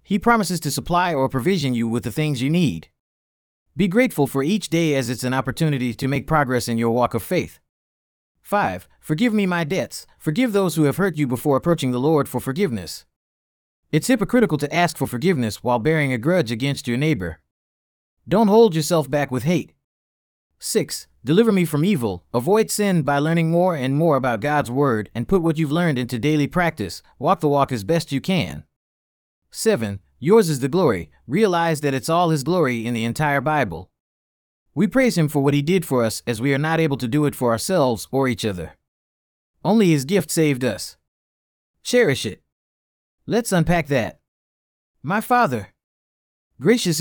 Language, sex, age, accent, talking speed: English, male, 30-49, American, 185 wpm